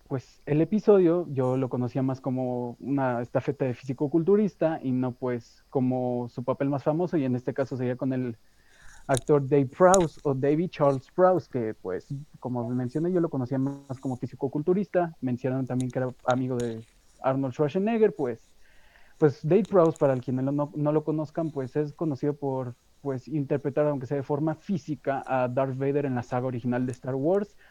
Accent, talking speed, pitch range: Mexican, 185 wpm, 130-160 Hz